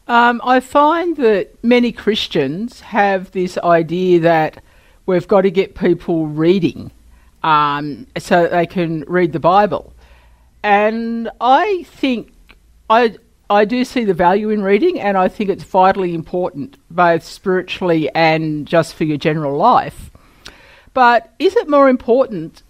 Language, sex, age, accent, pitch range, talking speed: English, female, 50-69, Australian, 170-215 Hz, 145 wpm